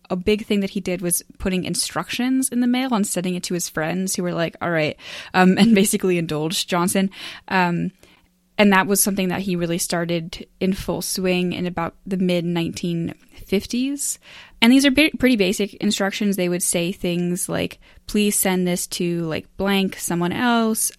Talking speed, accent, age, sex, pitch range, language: 185 wpm, American, 10-29, female, 175-210 Hz, English